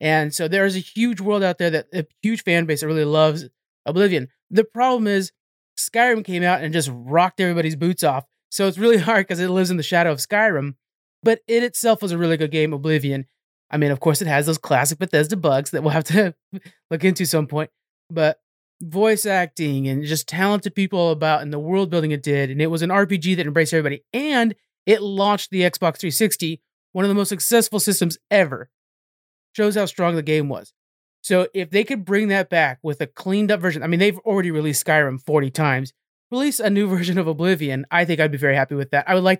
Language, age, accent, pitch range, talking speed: English, 30-49, American, 155-190 Hz, 220 wpm